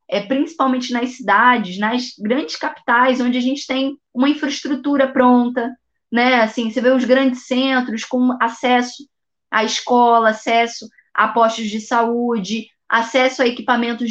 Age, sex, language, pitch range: 20-39, female, Portuguese, 235-270 Hz